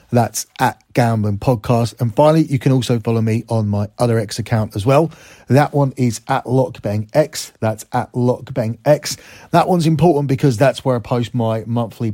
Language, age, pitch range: English, 30-49, 110-130 Hz